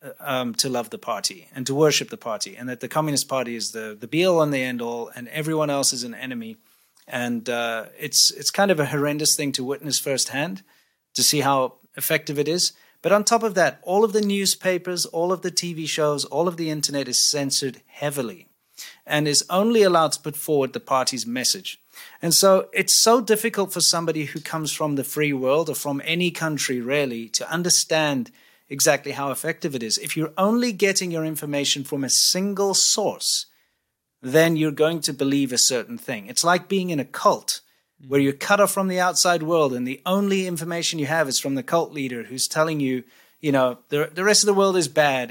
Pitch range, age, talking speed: 140-180 Hz, 30-49, 210 wpm